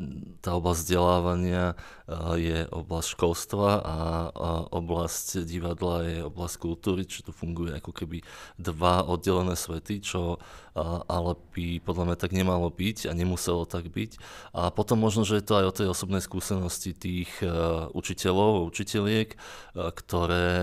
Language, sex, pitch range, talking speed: Slovak, male, 85-95 Hz, 155 wpm